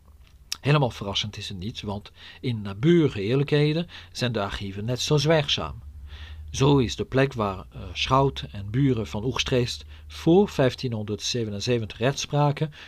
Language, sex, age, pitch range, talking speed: Dutch, male, 50-69, 100-145 Hz, 130 wpm